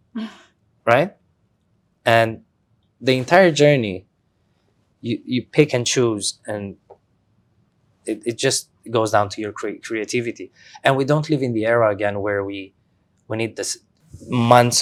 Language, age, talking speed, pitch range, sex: English, 20-39, 140 wpm, 100-110 Hz, male